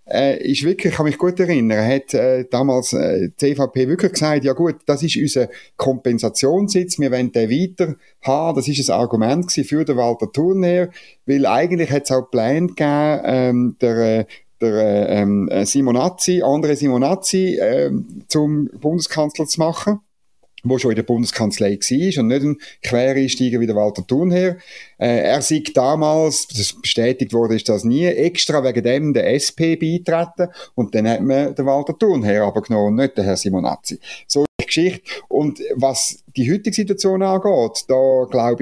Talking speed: 170 wpm